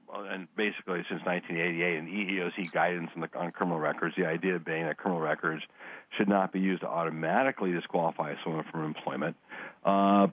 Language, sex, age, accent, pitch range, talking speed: English, male, 60-79, American, 85-105 Hz, 170 wpm